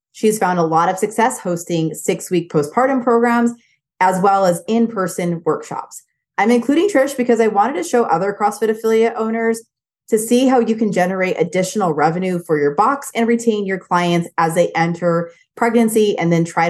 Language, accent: English, American